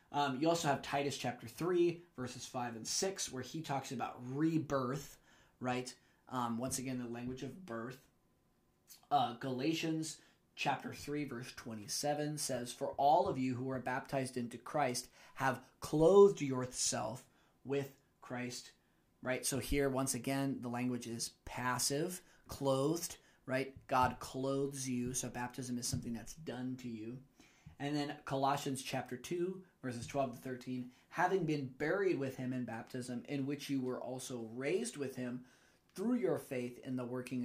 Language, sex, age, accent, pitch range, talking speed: English, male, 20-39, American, 125-145 Hz, 155 wpm